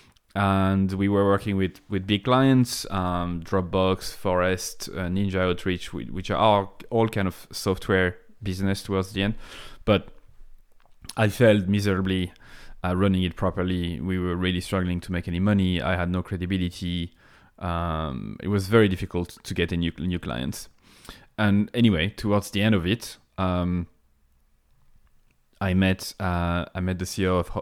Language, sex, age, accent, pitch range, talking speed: English, male, 20-39, French, 90-105 Hz, 155 wpm